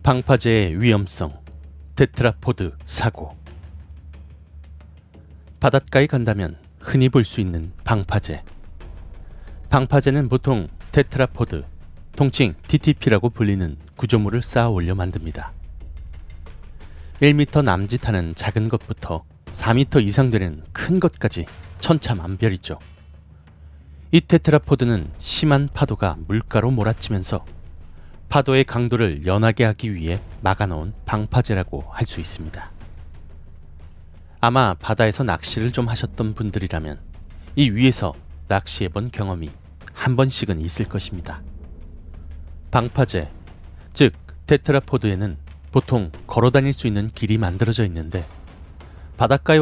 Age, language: 30-49, Korean